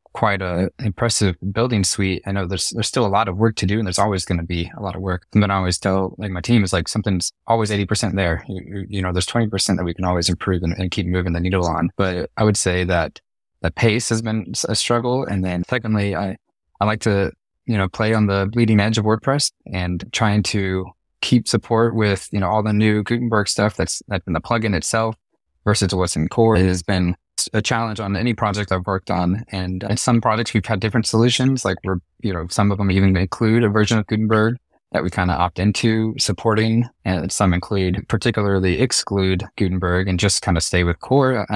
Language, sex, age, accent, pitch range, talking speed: English, male, 20-39, American, 90-110 Hz, 230 wpm